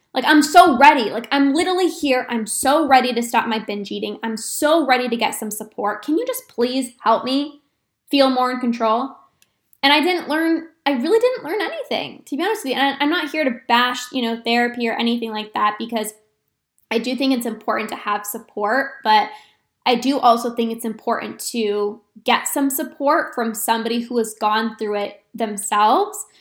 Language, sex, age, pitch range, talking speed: English, female, 10-29, 225-290 Hz, 200 wpm